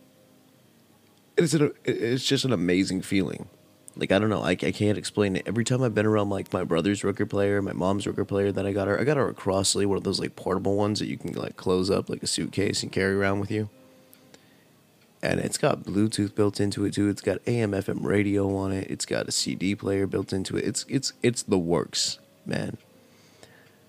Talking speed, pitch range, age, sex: 220 wpm, 95-115 Hz, 20-39, male